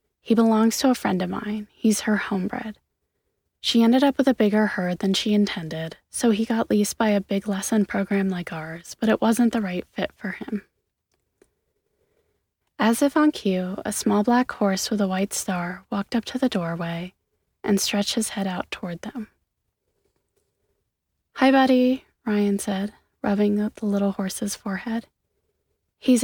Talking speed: 170 wpm